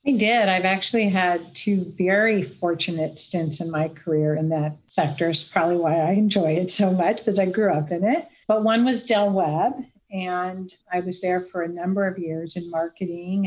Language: English